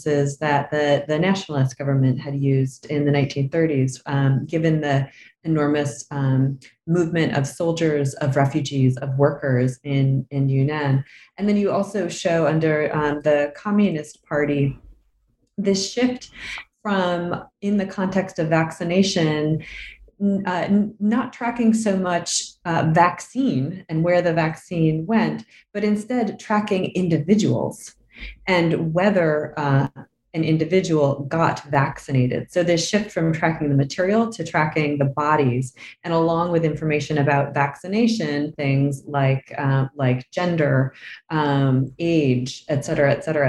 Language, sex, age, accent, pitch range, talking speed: English, female, 30-49, American, 140-175 Hz, 130 wpm